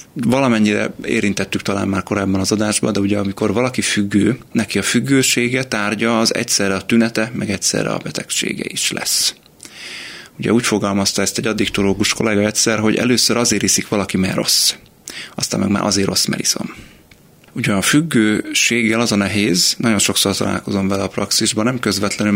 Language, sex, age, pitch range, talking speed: Hungarian, male, 30-49, 100-115 Hz, 165 wpm